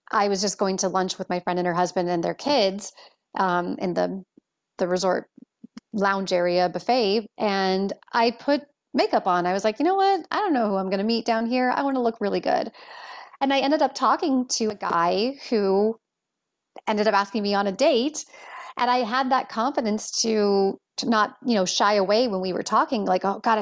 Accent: American